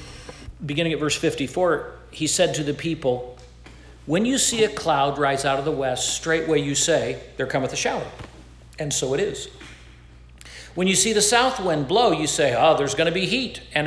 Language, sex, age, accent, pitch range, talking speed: English, male, 50-69, American, 110-155 Hz, 200 wpm